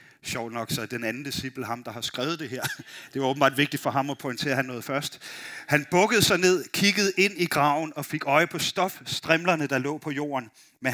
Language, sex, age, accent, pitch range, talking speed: Danish, male, 30-49, native, 135-170 Hz, 235 wpm